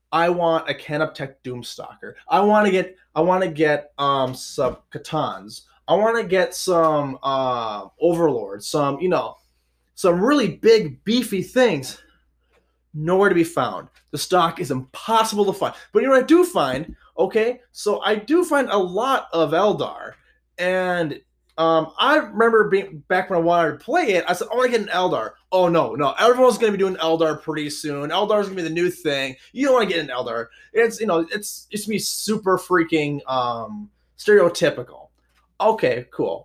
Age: 20-39